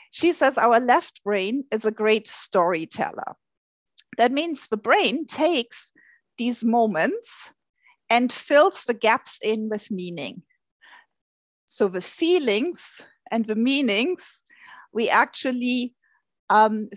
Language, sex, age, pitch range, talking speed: English, female, 40-59, 220-315 Hz, 115 wpm